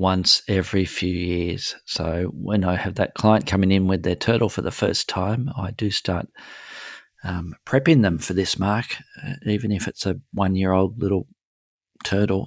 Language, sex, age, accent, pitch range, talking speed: English, male, 40-59, Australian, 85-105 Hz, 175 wpm